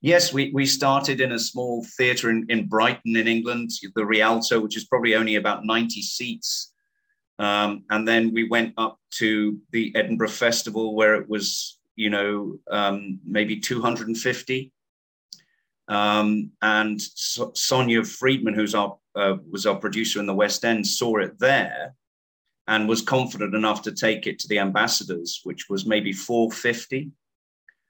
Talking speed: 155 wpm